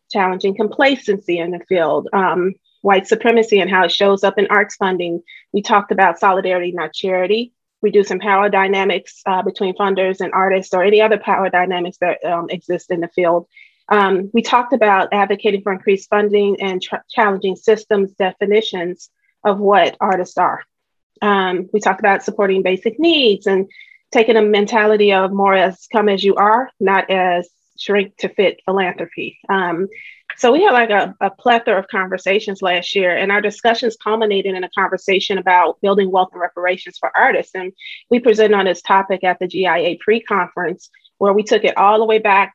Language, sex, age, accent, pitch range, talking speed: English, female, 30-49, American, 185-210 Hz, 180 wpm